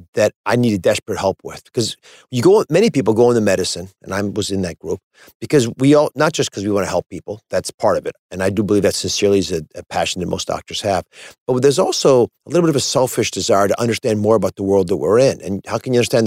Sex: male